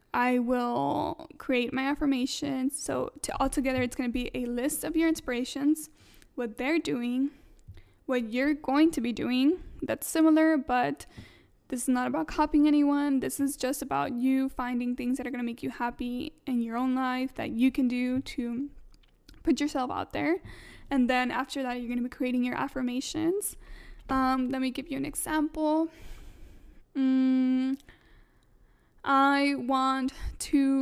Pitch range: 250-290 Hz